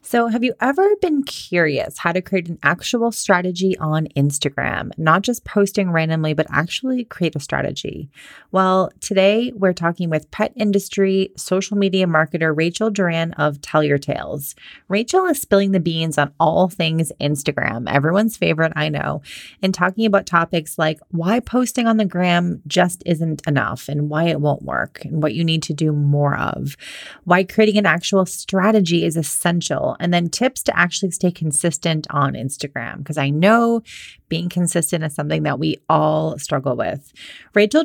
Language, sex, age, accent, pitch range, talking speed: English, female, 30-49, American, 155-195 Hz, 170 wpm